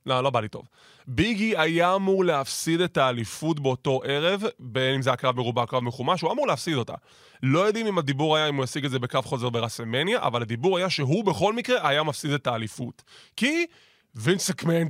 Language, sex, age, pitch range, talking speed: Hebrew, male, 20-39, 135-180 Hz, 200 wpm